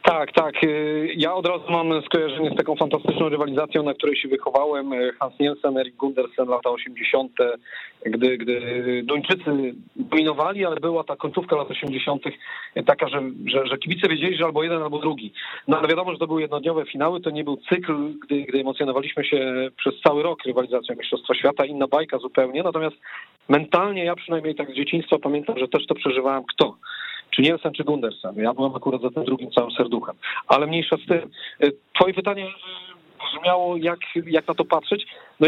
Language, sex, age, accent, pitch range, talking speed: Polish, male, 40-59, native, 140-180 Hz, 180 wpm